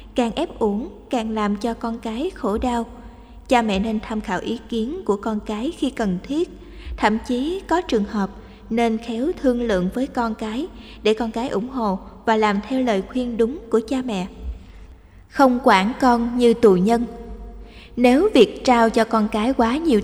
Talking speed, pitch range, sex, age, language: 190 wpm, 210-245 Hz, female, 20-39, Vietnamese